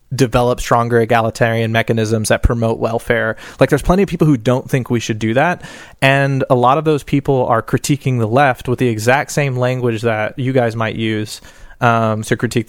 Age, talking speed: 20-39, 200 wpm